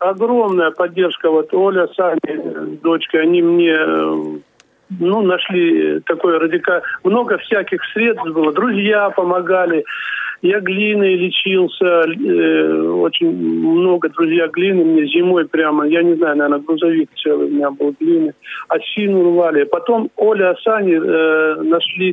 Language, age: Russian, 50-69